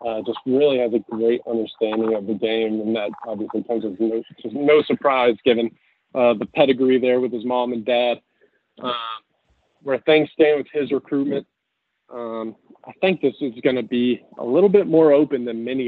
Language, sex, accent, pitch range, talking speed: English, male, American, 115-130 Hz, 190 wpm